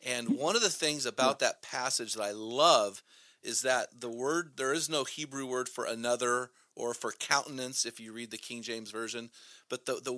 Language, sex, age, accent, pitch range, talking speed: English, male, 40-59, American, 120-155 Hz, 205 wpm